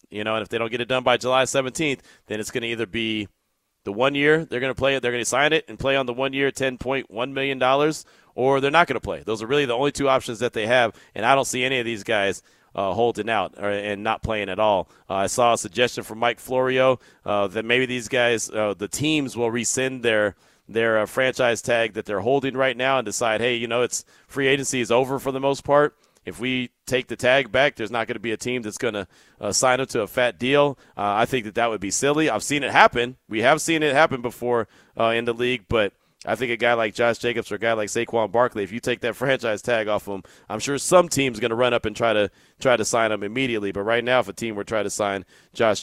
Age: 30-49